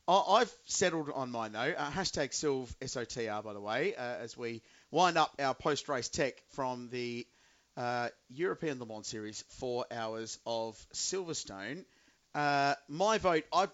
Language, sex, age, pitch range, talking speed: English, male, 30-49, 125-150 Hz, 155 wpm